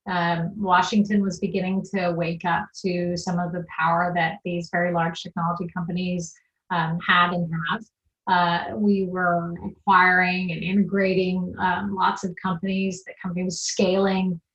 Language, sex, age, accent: English, female, 30-49, American